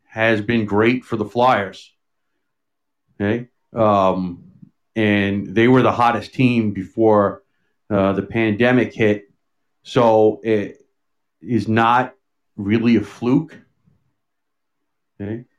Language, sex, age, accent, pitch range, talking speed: English, male, 40-59, American, 105-125 Hz, 105 wpm